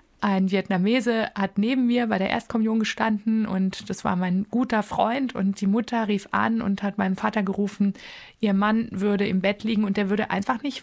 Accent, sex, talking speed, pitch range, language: German, female, 200 wpm, 190-220 Hz, German